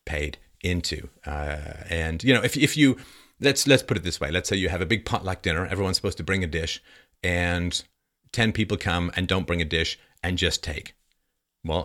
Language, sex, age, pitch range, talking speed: English, male, 40-59, 85-115 Hz, 215 wpm